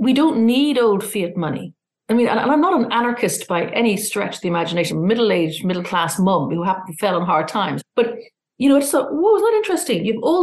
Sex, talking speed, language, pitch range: female, 220 wpm, English, 210-285 Hz